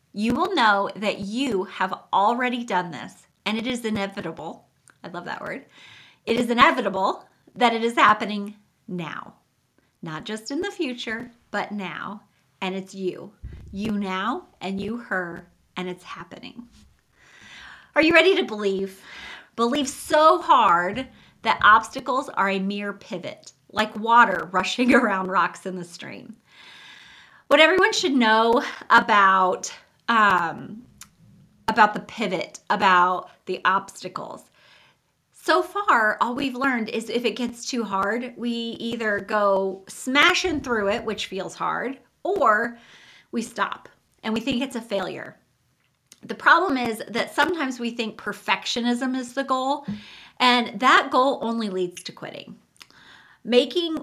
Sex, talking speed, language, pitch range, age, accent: female, 140 wpm, English, 195-260 Hz, 30-49, American